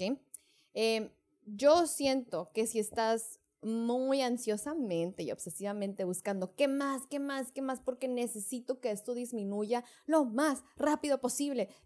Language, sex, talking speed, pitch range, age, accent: Spanish, female, 135 wpm, 210-275 Hz, 20-39, Mexican